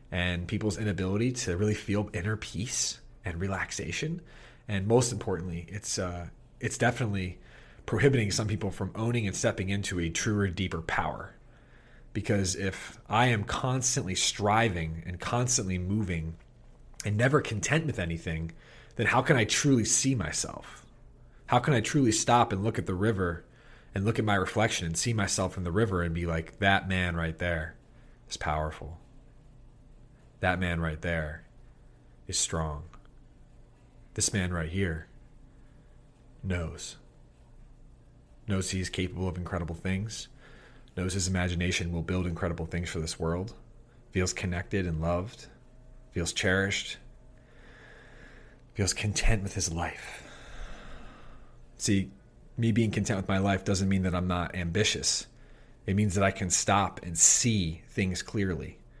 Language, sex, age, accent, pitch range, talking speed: English, male, 30-49, American, 90-120 Hz, 145 wpm